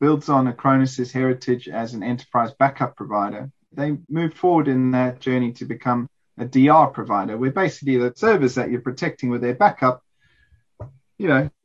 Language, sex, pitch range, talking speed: English, male, 125-150 Hz, 170 wpm